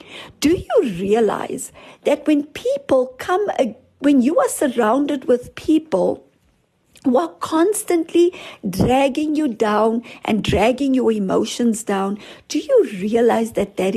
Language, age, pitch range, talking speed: English, 60-79, 205-295 Hz, 125 wpm